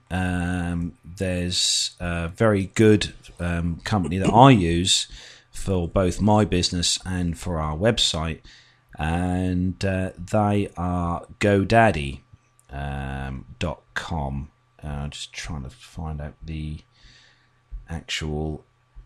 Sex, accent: male, British